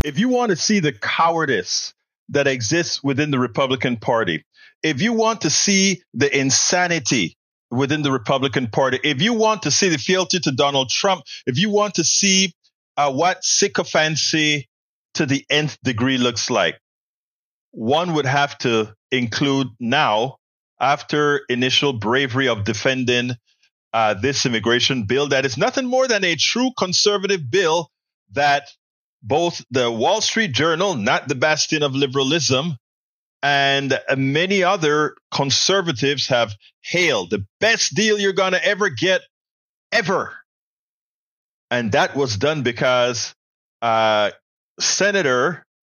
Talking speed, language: 135 wpm, English